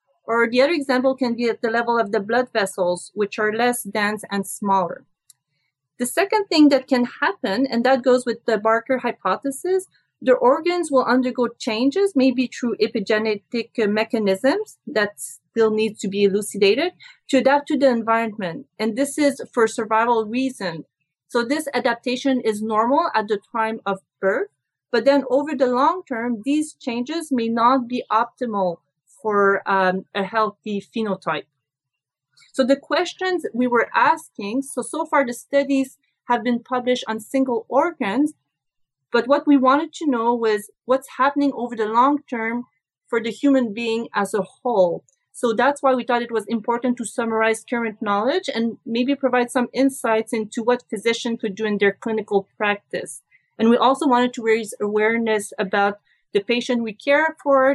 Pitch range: 210-265 Hz